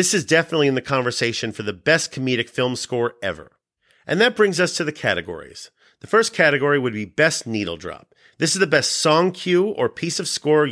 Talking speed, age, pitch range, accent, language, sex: 215 wpm, 40-59, 115-150 Hz, American, English, male